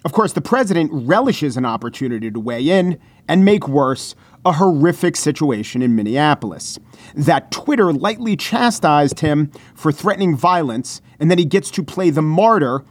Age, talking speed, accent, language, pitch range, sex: 40-59, 160 wpm, American, English, 130-175 Hz, male